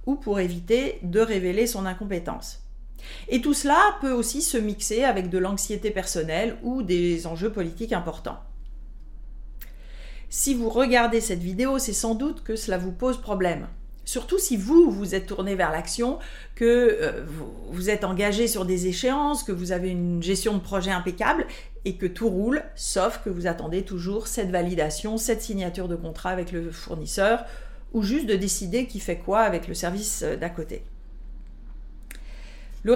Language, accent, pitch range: French, French, 185-235 Hz